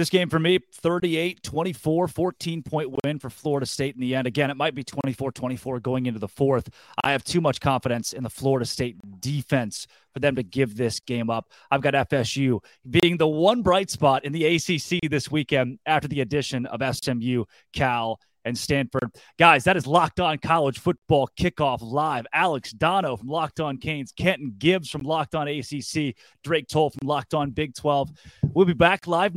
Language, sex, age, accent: English, male, 30-49, American